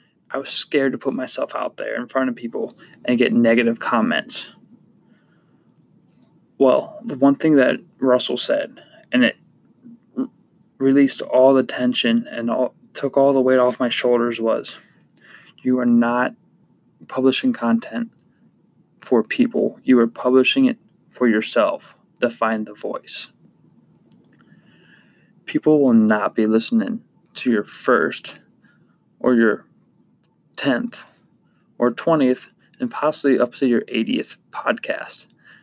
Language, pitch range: English, 120-165 Hz